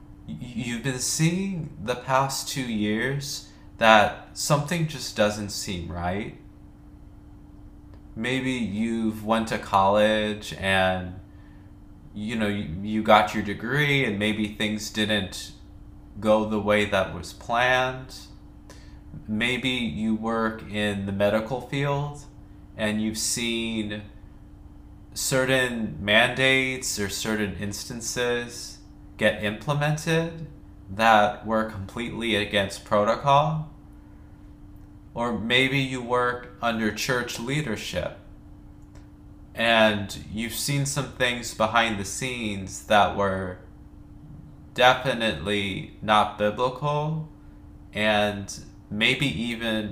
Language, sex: English, male